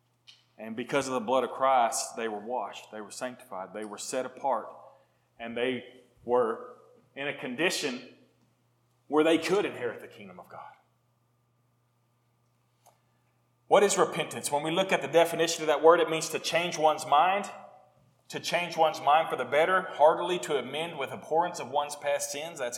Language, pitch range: English, 120-160 Hz